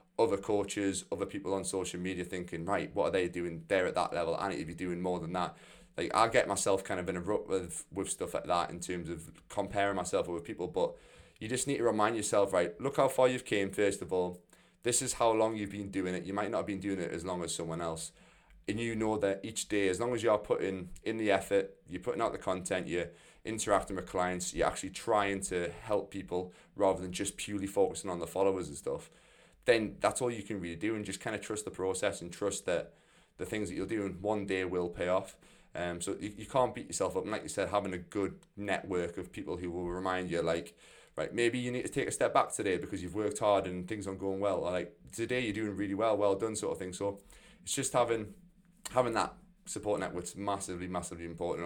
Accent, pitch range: British, 90-105 Hz